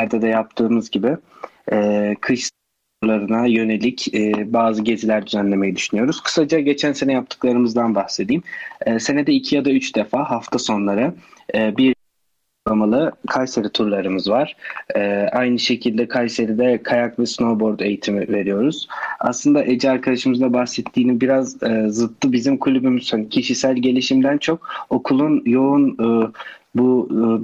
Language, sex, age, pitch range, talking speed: Turkish, male, 30-49, 110-130 Hz, 125 wpm